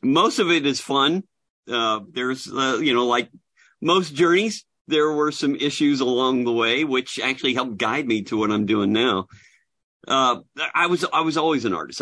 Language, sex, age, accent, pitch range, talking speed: English, male, 50-69, American, 95-125 Hz, 190 wpm